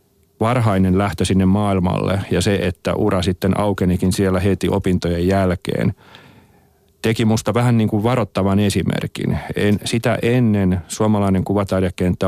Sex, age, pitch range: male, 40-59, 95-105 Hz